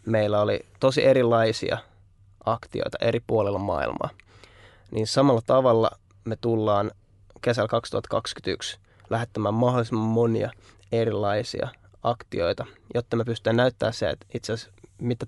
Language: Finnish